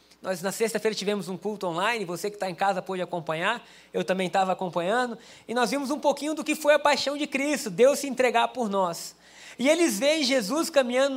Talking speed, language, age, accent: 215 wpm, Portuguese, 20-39, Brazilian